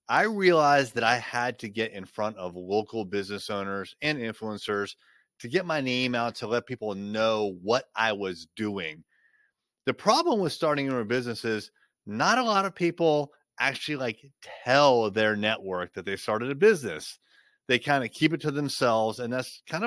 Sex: male